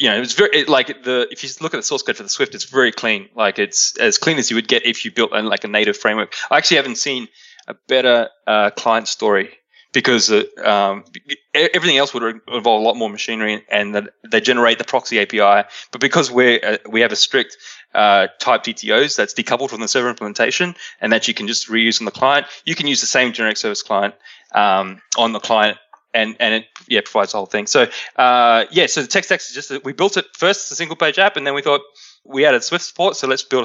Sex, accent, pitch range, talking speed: male, Australian, 115-150 Hz, 245 wpm